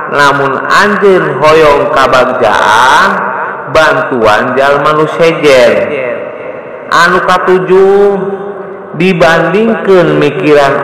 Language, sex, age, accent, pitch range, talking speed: Indonesian, male, 50-69, native, 130-185 Hz, 70 wpm